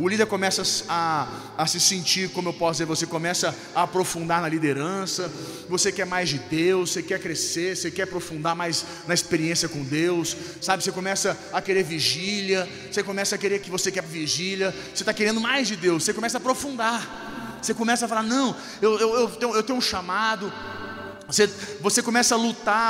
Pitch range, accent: 180-240 Hz, Brazilian